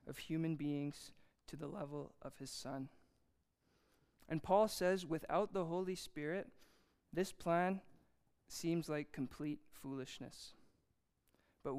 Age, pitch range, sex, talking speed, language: 20-39, 140-165 Hz, male, 115 wpm, English